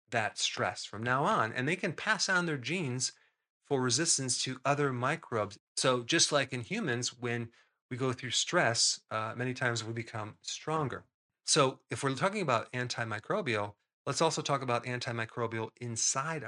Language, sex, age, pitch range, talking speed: English, male, 40-59, 115-145 Hz, 165 wpm